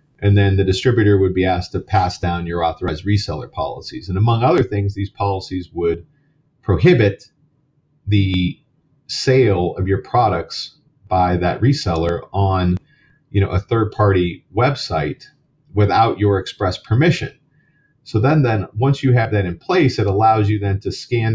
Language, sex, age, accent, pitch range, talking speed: English, male, 30-49, American, 90-130 Hz, 150 wpm